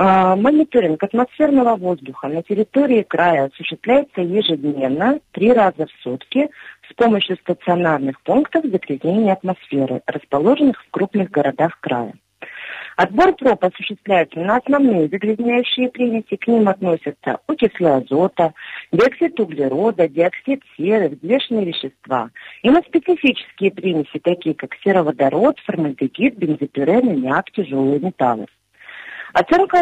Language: Russian